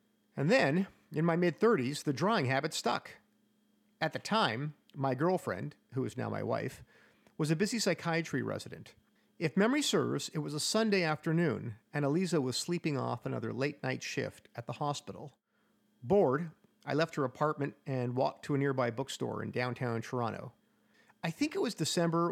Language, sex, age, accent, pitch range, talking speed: English, male, 50-69, American, 135-185 Hz, 165 wpm